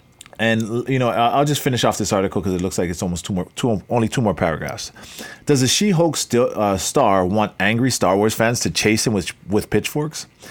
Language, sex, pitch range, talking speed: English, male, 95-130 Hz, 225 wpm